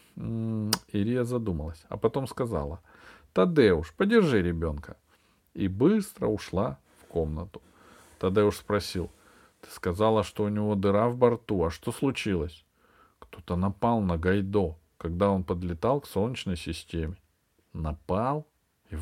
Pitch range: 90-125 Hz